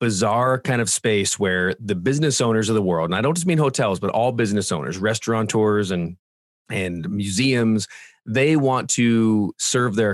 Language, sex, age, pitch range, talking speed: English, male, 30-49, 100-125 Hz, 180 wpm